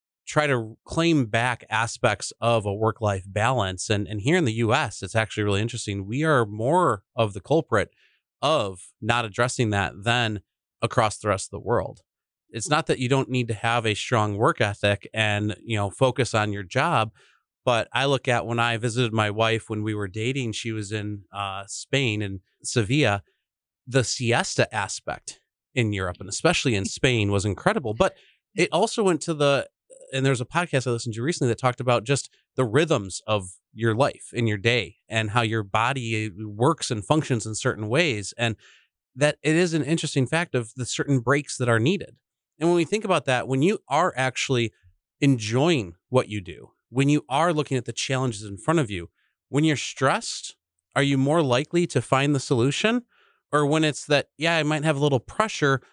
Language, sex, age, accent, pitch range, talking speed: English, male, 30-49, American, 110-145 Hz, 195 wpm